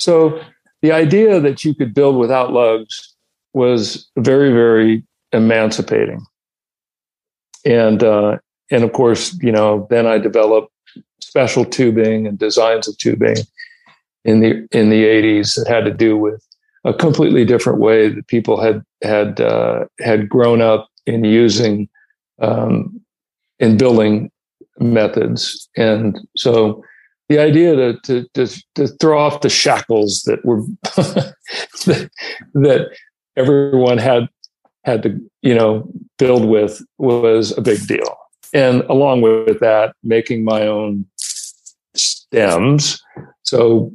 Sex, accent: male, American